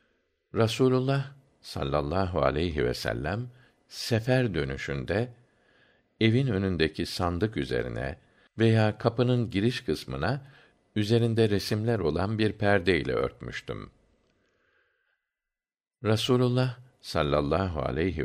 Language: Turkish